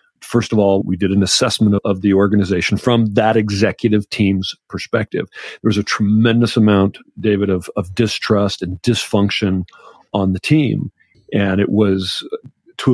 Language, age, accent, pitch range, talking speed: English, 40-59, American, 100-120 Hz, 155 wpm